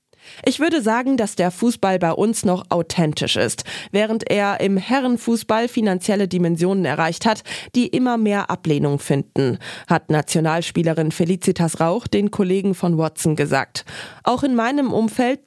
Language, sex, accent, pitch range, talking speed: German, female, German, 165-225 Hz, 145 wpm